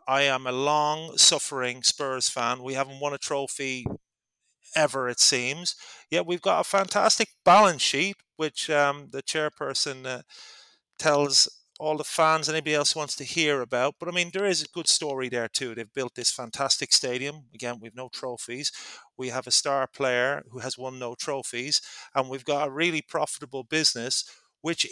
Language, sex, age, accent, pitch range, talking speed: English, male, 30-49, British, 125-155 Hz, 175 wpm